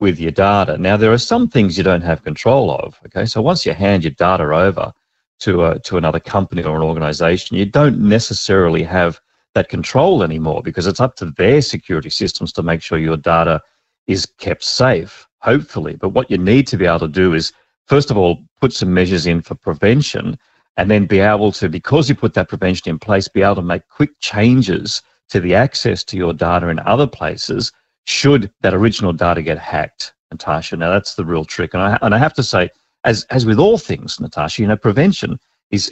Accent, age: Australian, 40-59